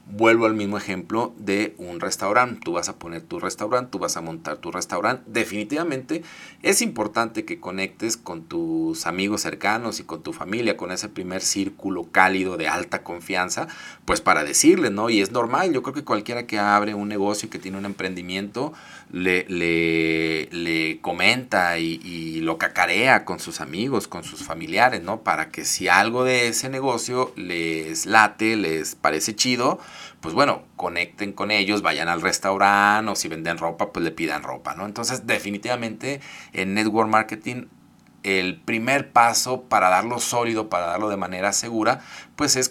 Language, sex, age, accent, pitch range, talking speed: Spanish, male, 40-59, Mexican, 90-110 Hz, 170 wpm